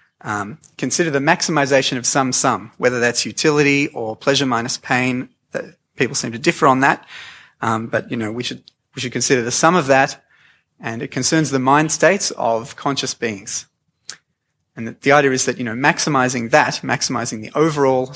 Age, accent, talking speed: 30-49, Australian, 185 wpm